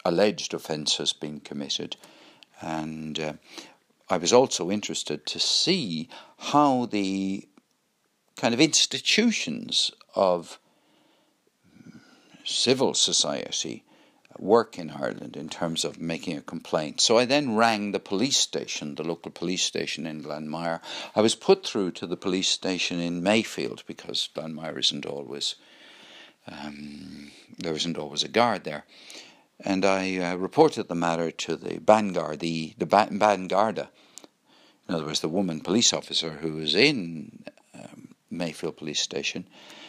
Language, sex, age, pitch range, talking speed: English, male, 60-79, 80-100 Hz, 135 wpm